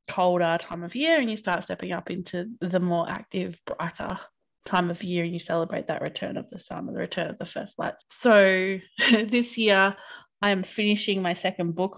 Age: 20-39